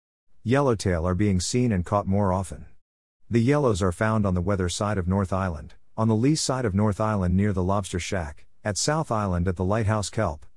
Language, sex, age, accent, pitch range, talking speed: English, male, 50-69, American, 90-110 Hz, 210 wpm